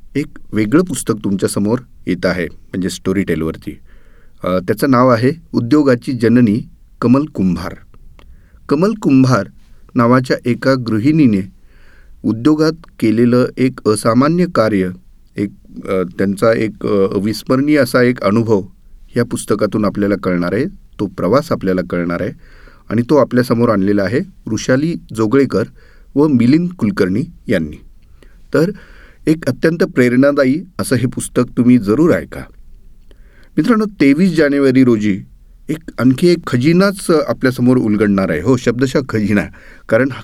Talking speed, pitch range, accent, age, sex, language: 115 wpm, 95-135 Hz, native, 40-59, male, Marathi